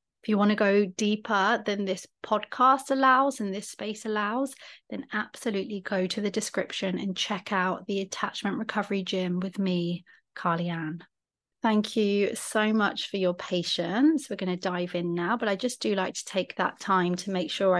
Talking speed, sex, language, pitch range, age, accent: 185 wpm, female, English, 190-225 Hz, 30-49, British